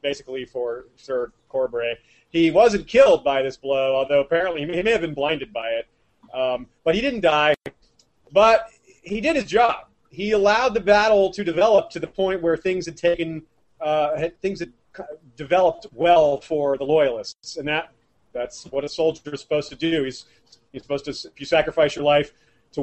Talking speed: 185 wpm